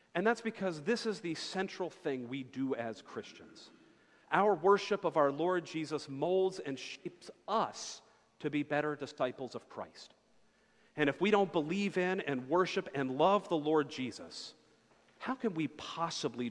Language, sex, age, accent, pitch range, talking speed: English, male, 40-59, American, 140-190 Hz, 165 wpm